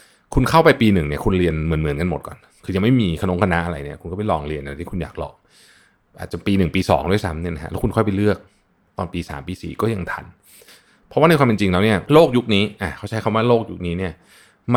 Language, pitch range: Thai, 85-110 Hz